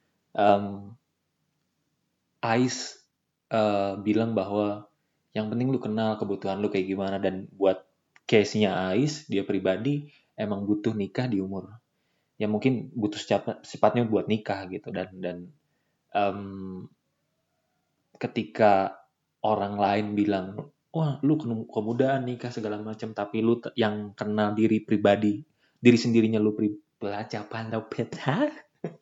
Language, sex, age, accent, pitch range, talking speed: Indonesian, male, 20-39, native, 100-120 Hz, 120 wpm